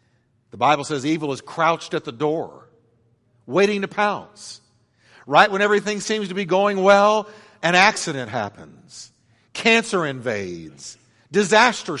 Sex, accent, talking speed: male, American, 130 wpm